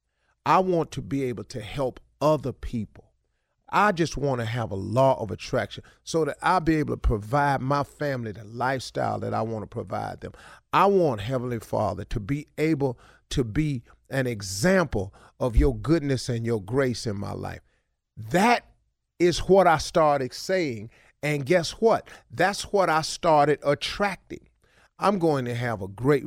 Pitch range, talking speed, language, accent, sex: 110-150 Hz, 165 wpm, English, American, male